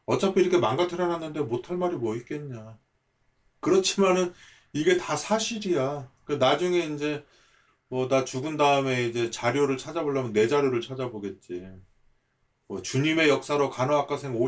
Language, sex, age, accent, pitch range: Korean, male, 40-59, native, 110-165 Hz